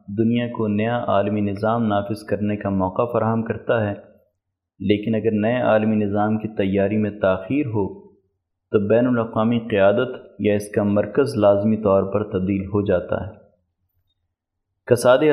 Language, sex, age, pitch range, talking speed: Urdu, male, 30-49, 100-115 Hz, 150 wpm